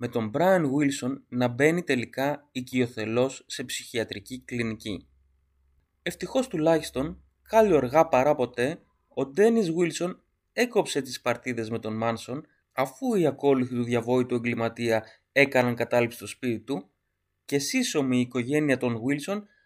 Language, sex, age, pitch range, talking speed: Greek, male, 20-39, 120-155 Hz, 130 wpm